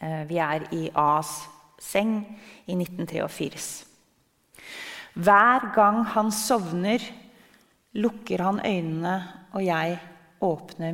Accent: Swedish